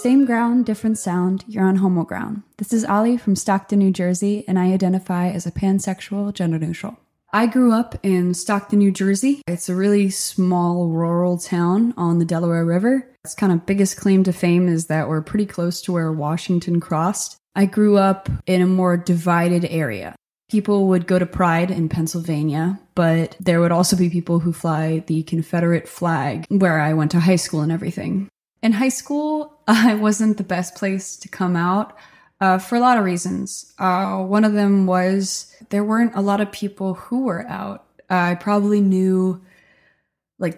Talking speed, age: 185 wpm, 20-39